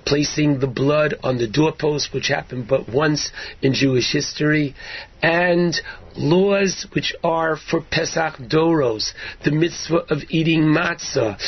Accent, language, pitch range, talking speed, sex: American, English, 150-175 Hz, 130 wpm, male